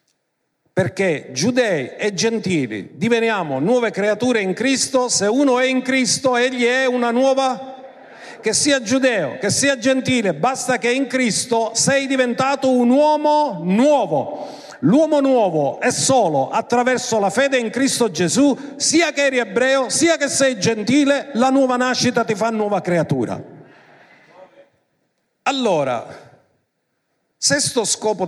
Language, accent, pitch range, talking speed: Italian, native, 185-255 Hz, 130 wpm